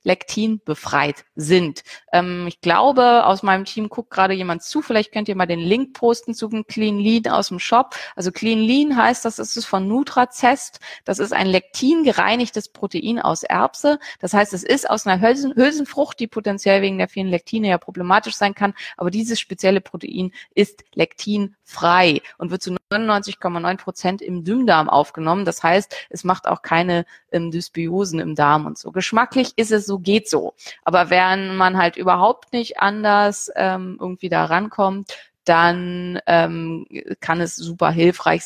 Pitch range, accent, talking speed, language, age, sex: 165-215 Hz, German, 170 wpm, German, 30-49, female